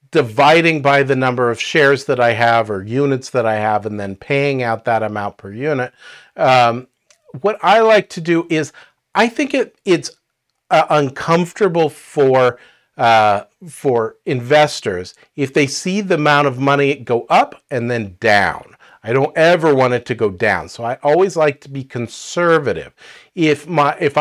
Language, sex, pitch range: English, male, 120-155 Hz